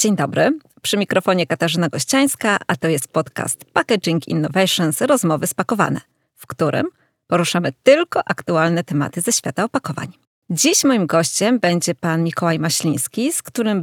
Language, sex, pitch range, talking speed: Polish, female, 165-235 Hz, 140 wpm